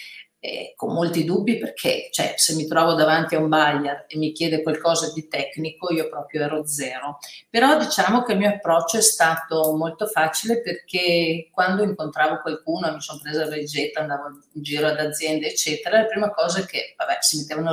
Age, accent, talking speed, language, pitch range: 50-69, native, 190 wpm, Italian, 150-205 Hz